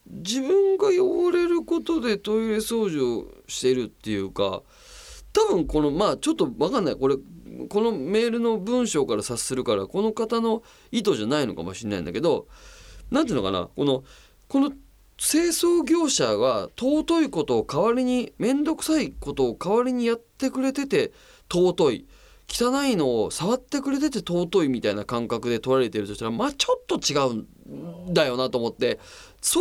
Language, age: Japanese, 20-39